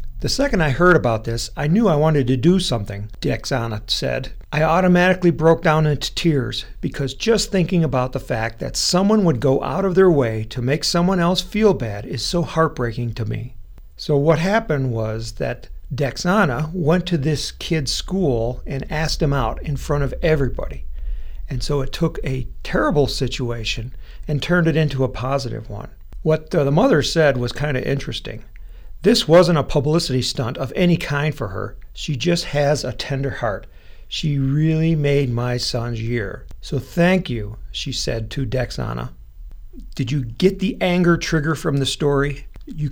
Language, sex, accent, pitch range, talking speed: English, male, American, 115-160 Hz, 175 wpm